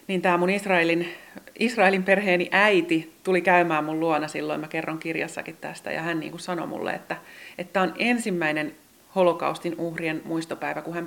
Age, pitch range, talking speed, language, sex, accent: 30-49, 160-190 Hz, 165 wpm, Finnish, female, native